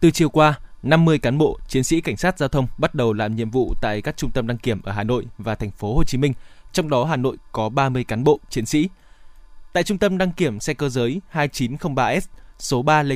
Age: 20-39